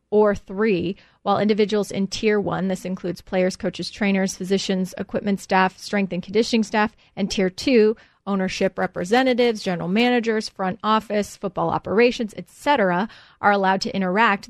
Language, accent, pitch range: English, American, 185-220 Hz